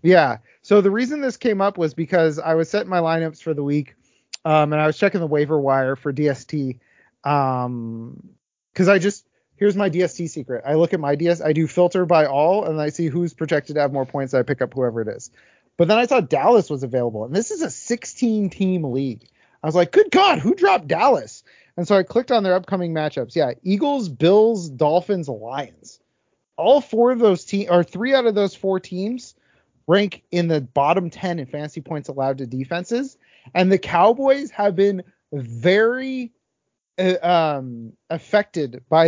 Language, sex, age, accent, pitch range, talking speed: English, male, 30-49, American, 145-195 Hz, 195 wpm